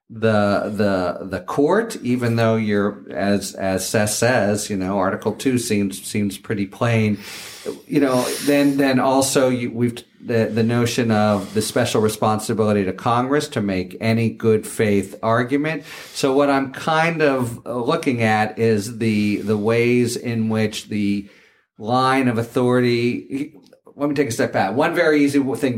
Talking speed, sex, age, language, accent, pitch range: 160 wpm, male, 50-69, English, American, 105-130 Hz